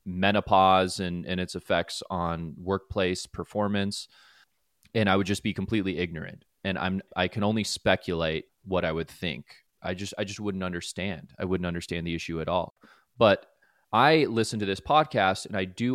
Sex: male